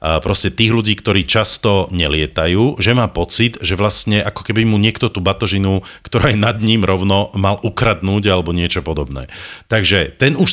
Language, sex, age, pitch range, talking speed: Slovak, male, 40-59, 95-125 Hz, 175 wpm